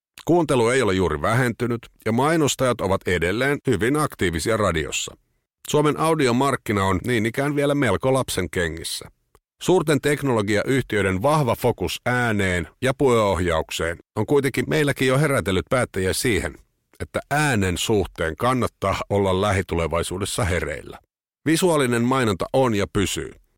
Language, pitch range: Finnish, 95-140 Hz